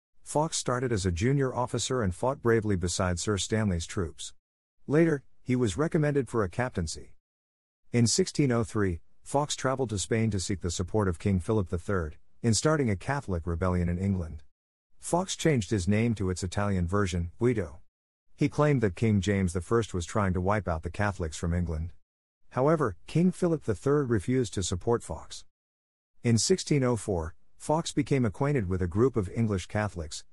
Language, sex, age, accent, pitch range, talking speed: English, male, 50-69, American, 90-120 Hz, 165 wpm